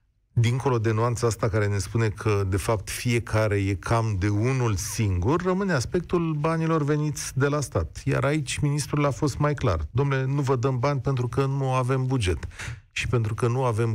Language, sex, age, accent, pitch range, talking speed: Romanian, male, 40-59, native, 105-145 Hz, 195 wpm